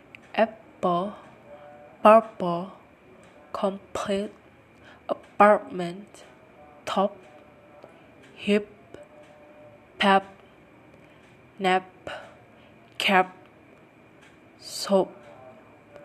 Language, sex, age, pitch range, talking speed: Indonesian, female, 20-39, 150-210 Hz, 35 wpm